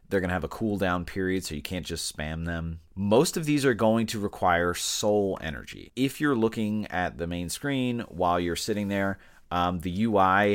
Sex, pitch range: male, 80-100 Hz